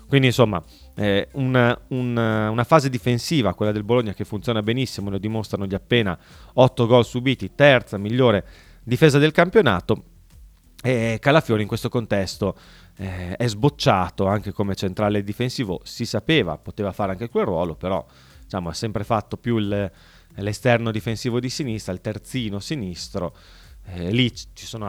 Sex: male